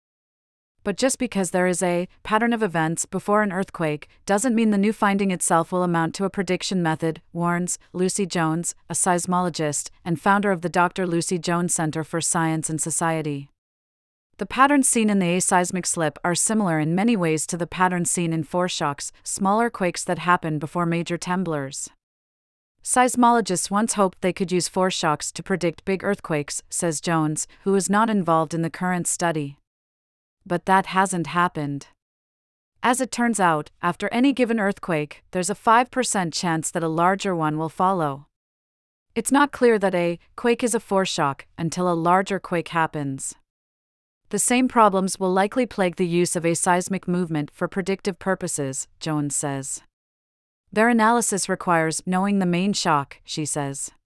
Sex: female